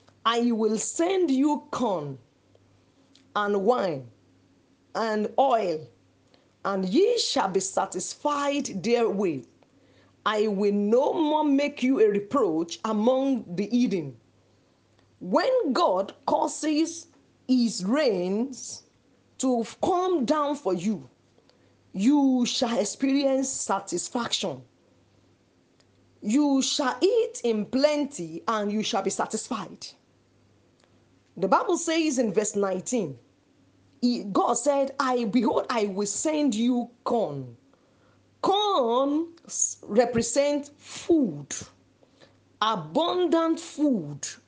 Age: 40-59